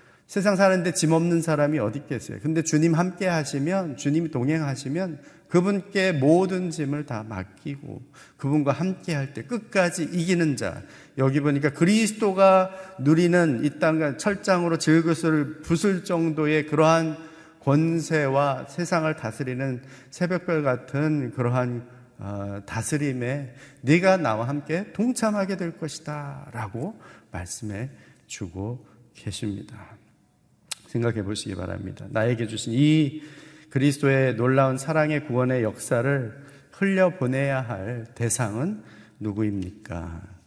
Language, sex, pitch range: Korean, male, 115-155 Hz